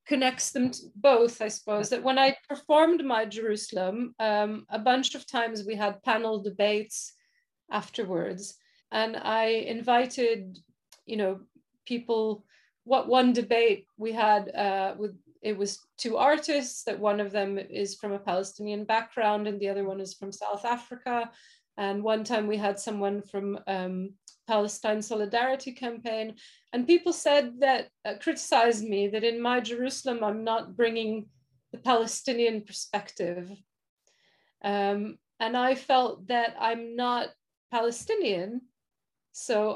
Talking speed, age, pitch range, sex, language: 140 wpm, 30-49, 205-255 Hz, female, English